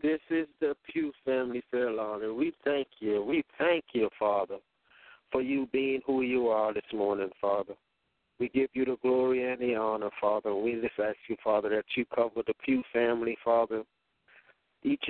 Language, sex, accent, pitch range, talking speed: English, male, American, 110-135 Hz, 180 wpm